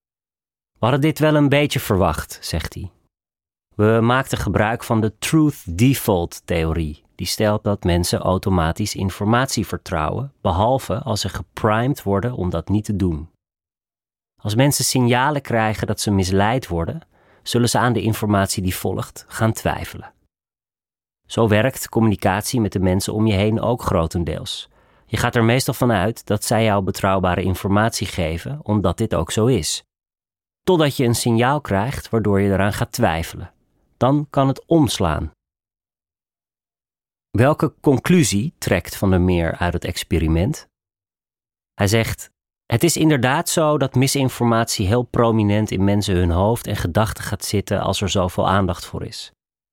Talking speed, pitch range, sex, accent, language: 150 wpm, 95-125 Hz, male, Dutch, Dutch